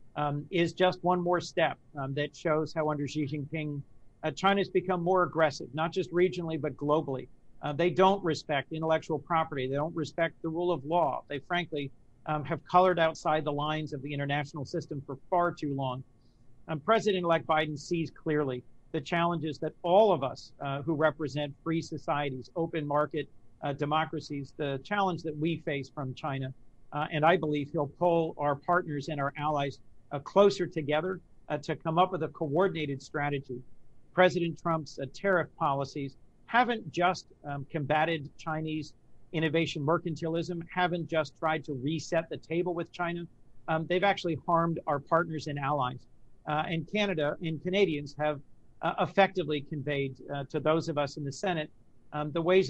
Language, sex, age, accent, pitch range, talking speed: English, male, 50-69, American, 145-170 Hz, 170 wpm